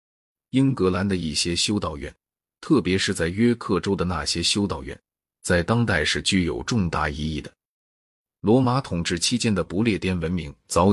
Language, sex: Chinese, male